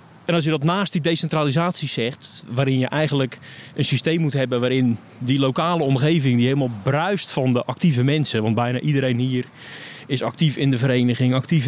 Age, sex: 30-49, male